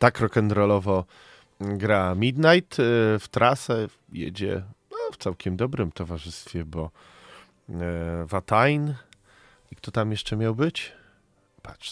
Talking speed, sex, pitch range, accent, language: 115 wpm, male, 85-115 Hz, native, Polish